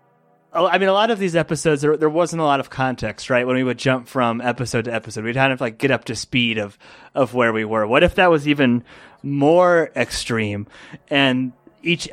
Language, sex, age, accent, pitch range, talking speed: English, male, 20-39, American, 120-150 Hz, 225 wpm